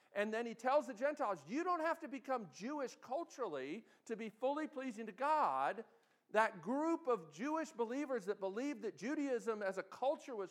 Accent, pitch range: American, 215-300 Hz